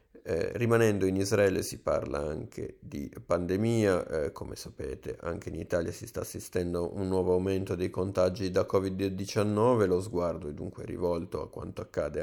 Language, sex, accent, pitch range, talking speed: Italian, male, native, 90-105 Hz, 165 wpm